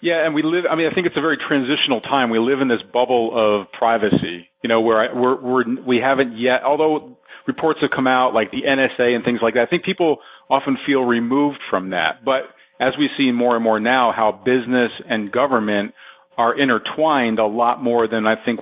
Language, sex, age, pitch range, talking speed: English, male, 40-59, 115-165 Hz, 220 wpm